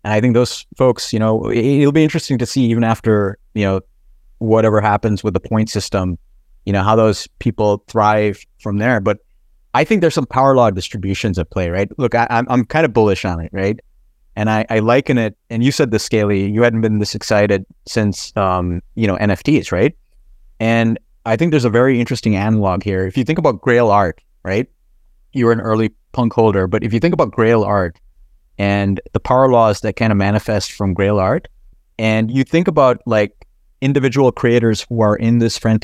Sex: male